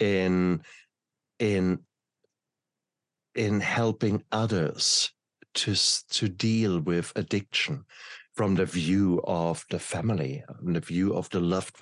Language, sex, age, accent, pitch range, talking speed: English, male, 50-69, German, 90-110 Hz, 110 wpm